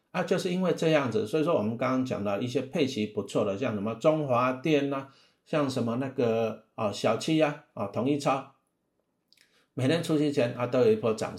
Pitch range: 115-145 Hz